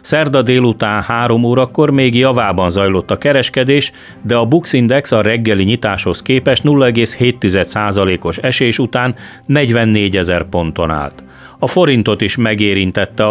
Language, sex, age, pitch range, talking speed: Hungarian, male, 40-59, 95-130 Hz, 120 wpm